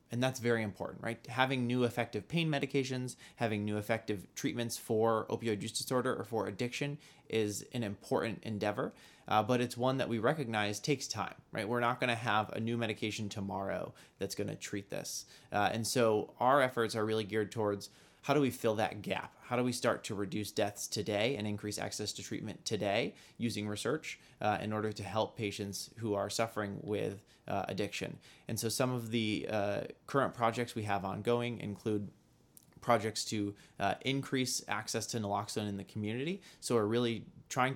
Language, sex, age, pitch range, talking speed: English, male, 20-39, 105-120 Hz, 185 wpm